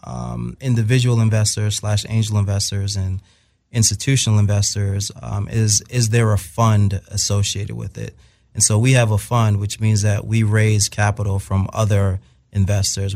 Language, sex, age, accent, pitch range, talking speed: English, male, 30-49, American, 100-115 Hz, 150 wpm